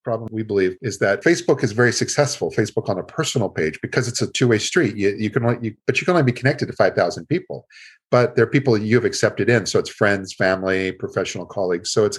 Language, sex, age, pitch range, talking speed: English, male, 50-69, 105-140 Hz, 245 wpm